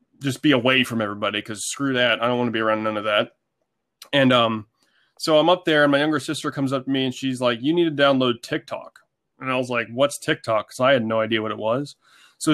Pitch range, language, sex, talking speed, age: 120-145 Hz, English, male, 260 wpm, 20-39